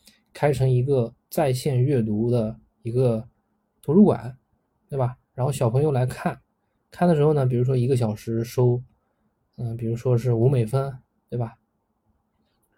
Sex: male